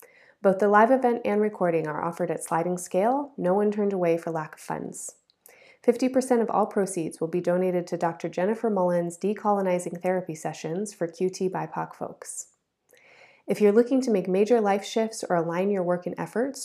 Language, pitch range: English, 175-210 Hz